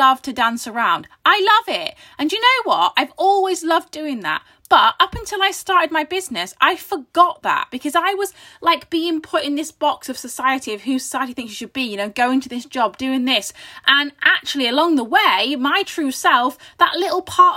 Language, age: English, 20-39